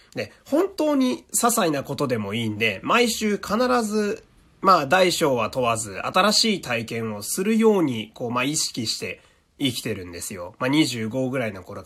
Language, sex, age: Japanese, male, 30-49